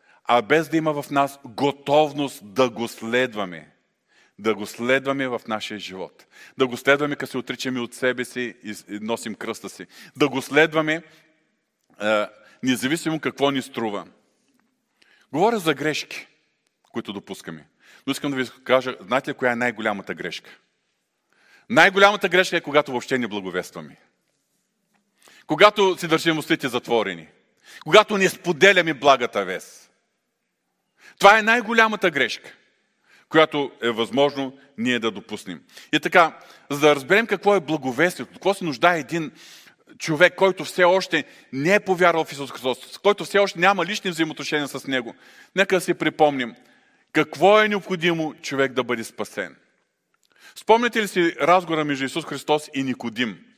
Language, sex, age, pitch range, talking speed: Bulgarian, male, 40-59, 130-180 Hz, 145 wpm